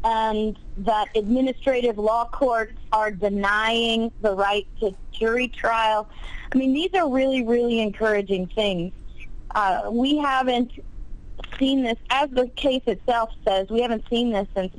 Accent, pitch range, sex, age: American, 200-250 Hz, female, 40-59